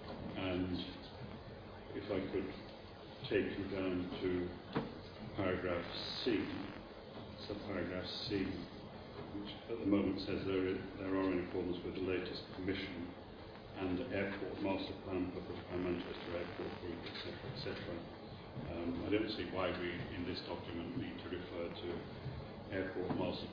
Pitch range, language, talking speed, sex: 90-105 Hz, English, 135 wpm, male